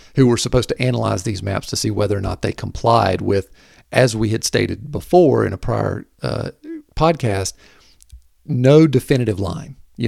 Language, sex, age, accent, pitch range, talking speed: English, male, 50-69, American, 105-135 Hz, 175 wpm